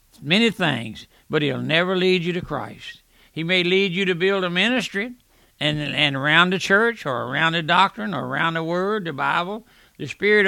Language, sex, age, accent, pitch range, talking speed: English, male, 60-79, American, 145-185 Hz, 195 wpm